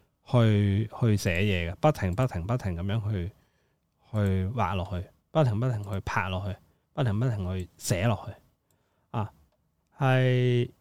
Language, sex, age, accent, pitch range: Chinese, male, 20-39, native, 100-140 Hz